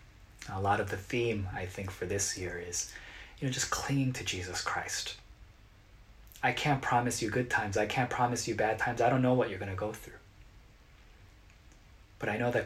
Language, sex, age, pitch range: Korean, male, 20-39, 95-125 Hz